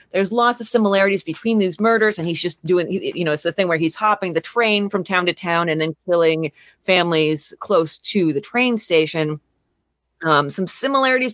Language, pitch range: English, 165-225 Hz